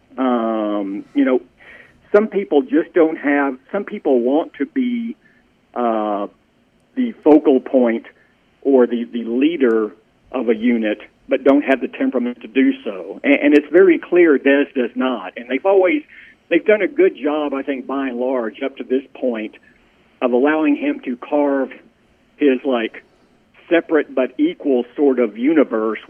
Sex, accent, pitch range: male, American, 125-195 Hz